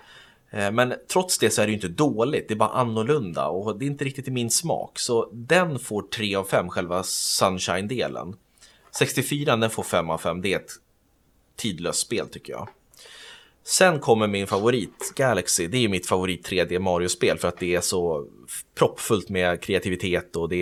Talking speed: 185 wpm